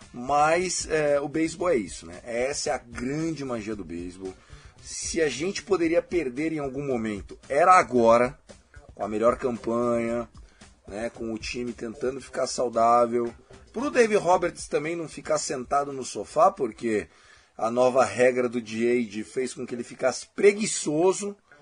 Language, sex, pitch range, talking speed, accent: Portuguese, male, 120-170 Hz, 160 wpm, Brazilian